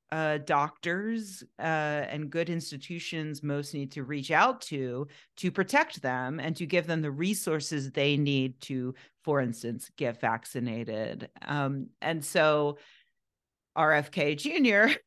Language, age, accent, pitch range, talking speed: English, 40-59, American, 135-175 Hz, 130 wpm